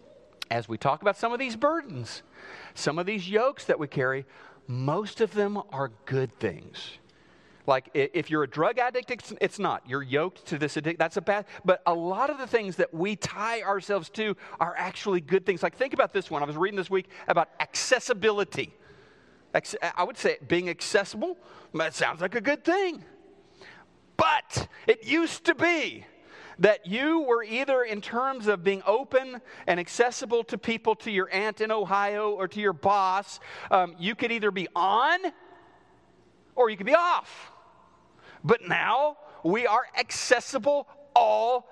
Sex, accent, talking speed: male, American, 170 wpm